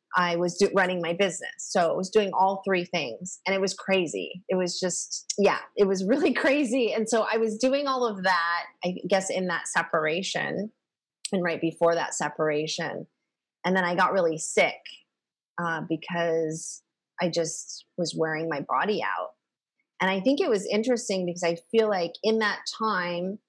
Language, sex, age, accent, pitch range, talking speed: English, female, 30-49, American, 170-205 Hz, 180 wpm